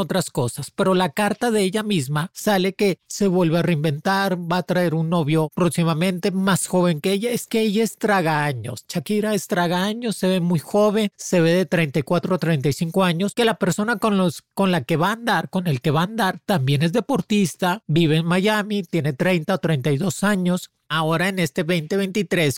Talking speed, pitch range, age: 200 wpm, 160-200 Hz, 40-59